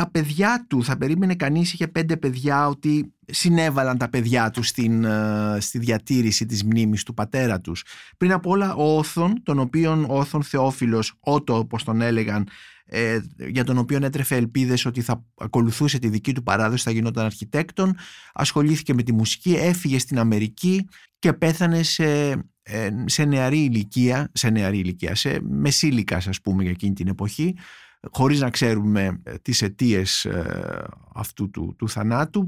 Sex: male